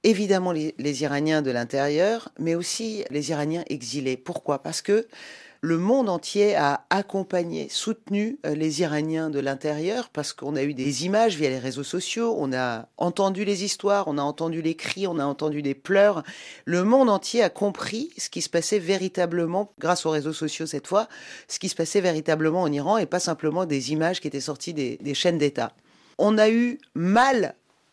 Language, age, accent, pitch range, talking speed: French, 40-59, French, 150-210 Hz, 190 wpm